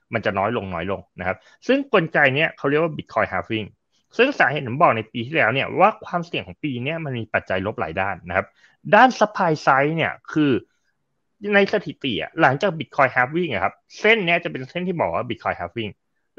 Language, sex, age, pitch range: Thai, male, 20-39, 110-180 Hz